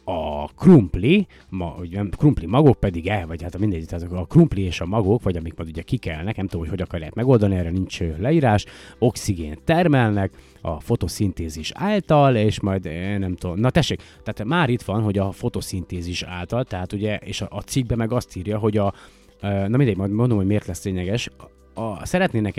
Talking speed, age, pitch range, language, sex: 190 wpm, 30-49, 85-110 Hz, Hungarian, male